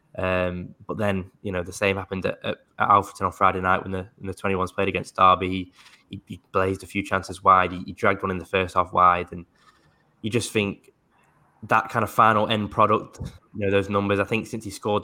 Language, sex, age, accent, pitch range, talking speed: English, male, 10-29, British, 90-100 Hz, 225 wpm